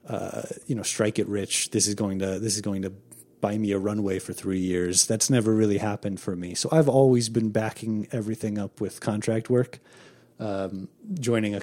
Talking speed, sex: 205 wpm, male